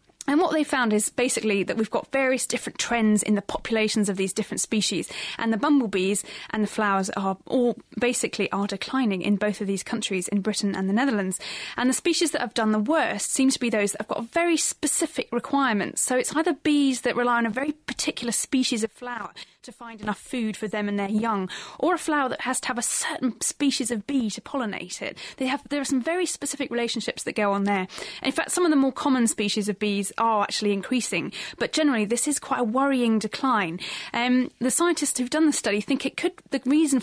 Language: English